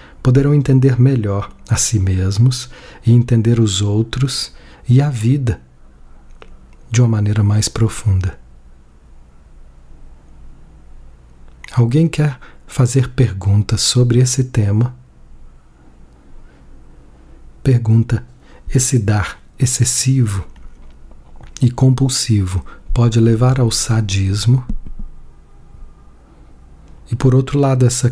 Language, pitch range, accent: Portuguese, 95-130 Hz, Brazilian